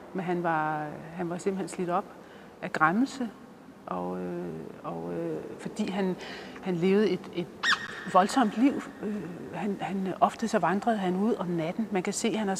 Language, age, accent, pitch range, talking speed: Danish, 40-59, native, 170-205 Hz, 170 wpm